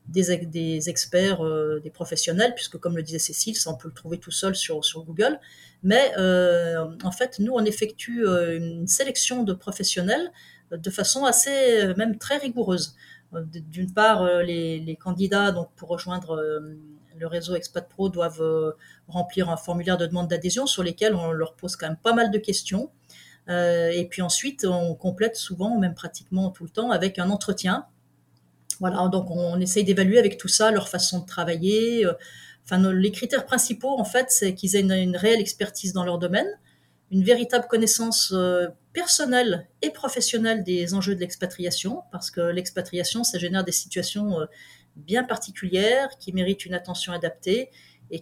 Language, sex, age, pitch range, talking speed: French, female, 30-49, 170-215 Hz, 165 wpm